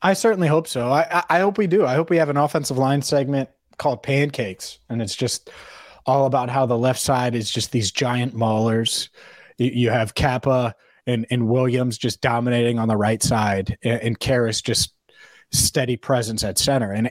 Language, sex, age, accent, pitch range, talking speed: English, male, 30-49, American, 120-150 Hz, 190 wpm